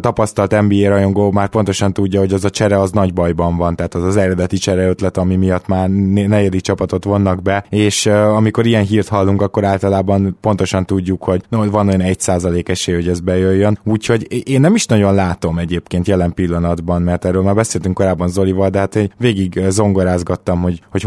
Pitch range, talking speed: 95-105 Hz, 195 wpm